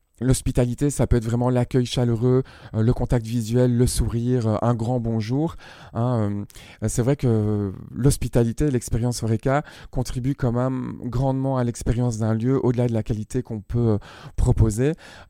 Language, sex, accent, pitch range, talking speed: French, male, French, 110-125 Hz, 145 wpm